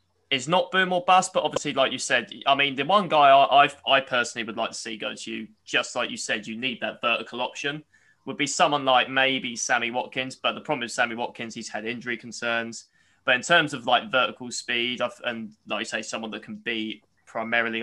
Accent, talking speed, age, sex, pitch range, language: British, 230 wpm, 20-39, male, 110-125 Hz, English